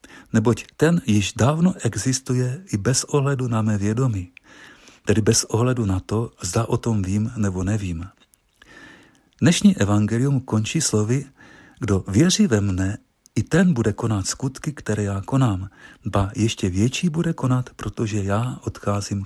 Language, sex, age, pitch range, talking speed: Czech, male, 50-69, 105-140 Hz, 145 wpm